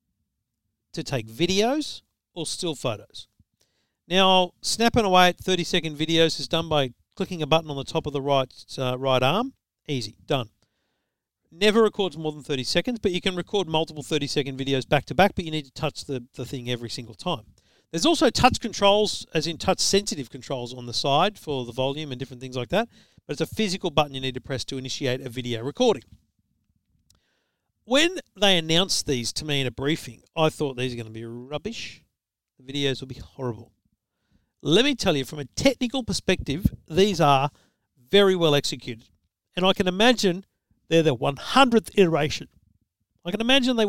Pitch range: 130-190 Hz